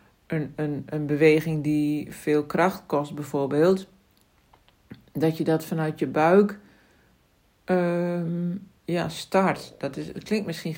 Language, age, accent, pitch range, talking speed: Dutch, 60-79, Dutch, 155-200 Hz, 105 wpm